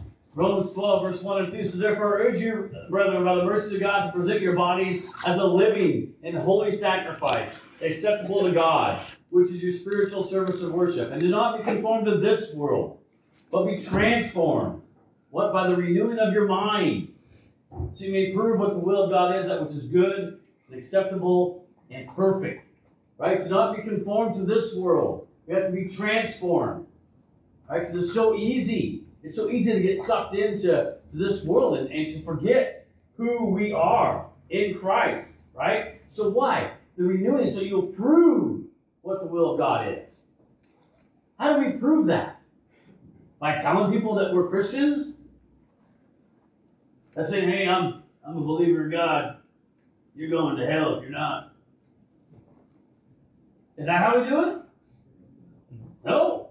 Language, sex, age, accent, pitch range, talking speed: English, male, 40-59, American, 175-210 Hz, 165 wpm